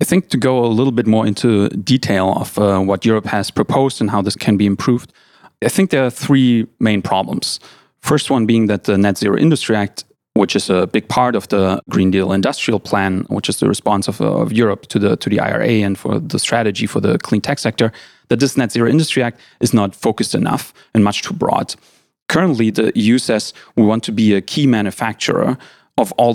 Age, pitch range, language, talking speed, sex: 30-49, 100-125 Hz, Polish, 220 wpm, male